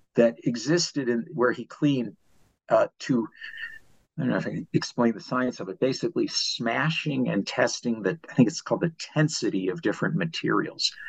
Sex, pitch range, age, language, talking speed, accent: male, 115-155 Hz, 50-69, English, 180 wpm, American